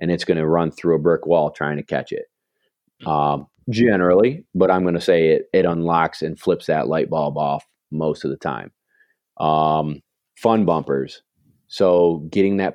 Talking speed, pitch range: 185 wpm, 80-95 Hz